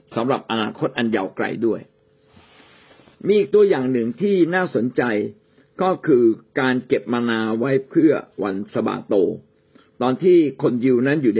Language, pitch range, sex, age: Thai, 115-165 Hz, male, 60-79